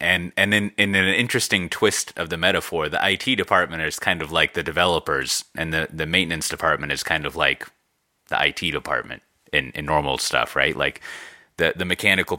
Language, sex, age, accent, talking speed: English, male, 30-49, American, 195 wpm